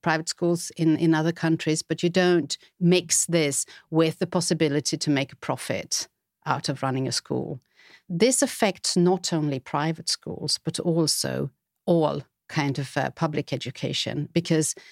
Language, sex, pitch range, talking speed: English, female, 150-190 Hz, 155 wpm